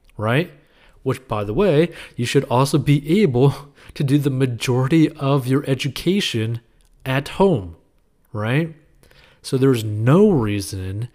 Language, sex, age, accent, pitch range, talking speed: English, male, 30-49, American, 115-145 Hz, 130 wpm